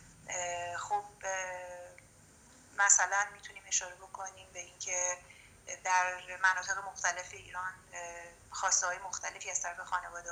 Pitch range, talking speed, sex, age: 180-205 Hz, 105 wpm, female, 30-49